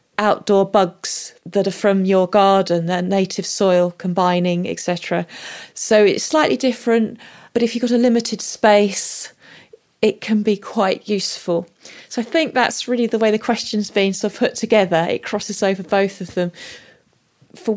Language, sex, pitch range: English, female, 180-215 Hz